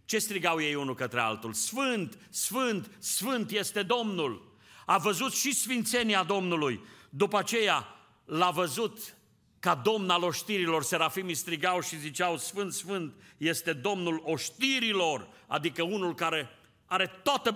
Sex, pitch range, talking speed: male, 115-180 Hz, 130 wpm